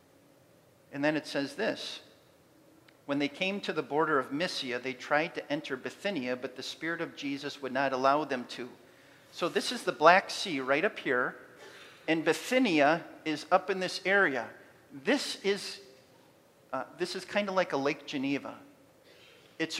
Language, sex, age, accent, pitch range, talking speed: English, male, 40-59, American, 160-255 Hz, 160 wpm